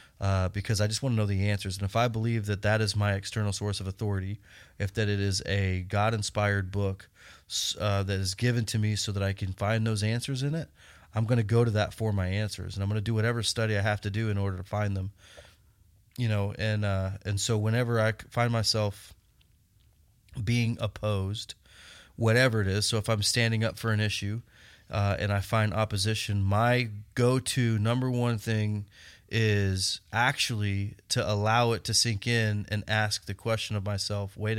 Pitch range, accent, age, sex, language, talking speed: 100-115 Hz, American, 30-49, male, English, 200 wpm